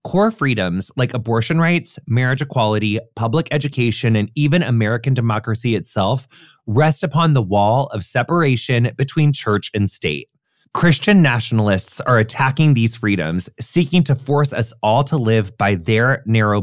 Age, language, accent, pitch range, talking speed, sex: 20-39, English, American, 110-155 Hz, 145 wpm, male